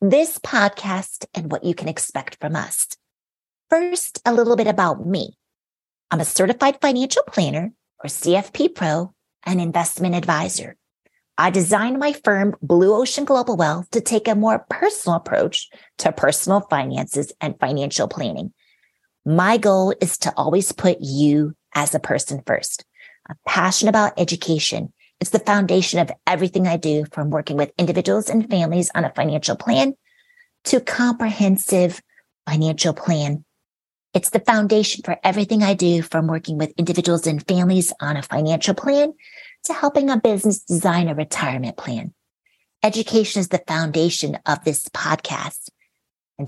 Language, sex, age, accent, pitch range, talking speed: English, female, 30-49, American, 160-220 Hz, 150 wpm